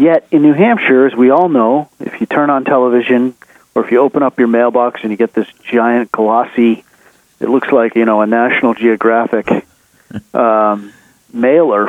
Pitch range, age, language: 120-165 Hz, 40-59, English